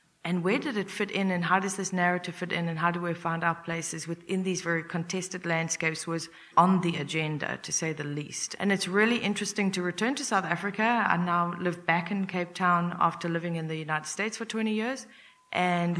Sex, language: female, English